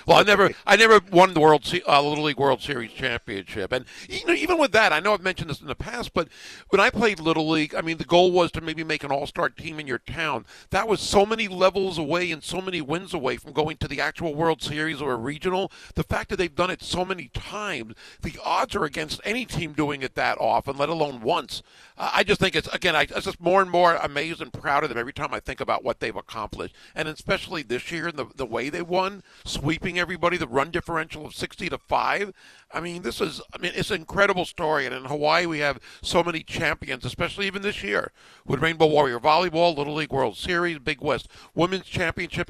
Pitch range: 150-185 Hz